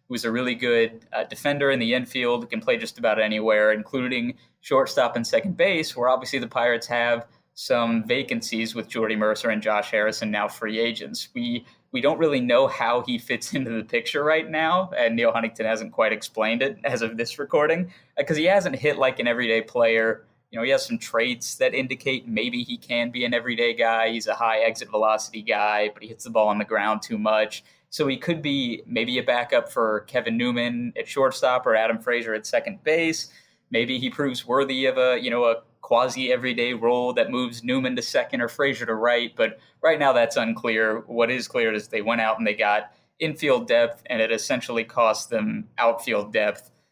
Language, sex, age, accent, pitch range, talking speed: English, male, 20-39, American, 110-135 Hz, 205 wpm